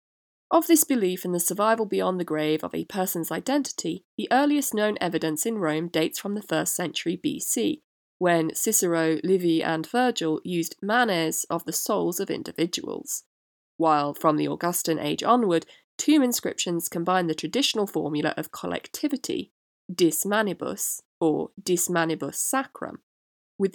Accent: British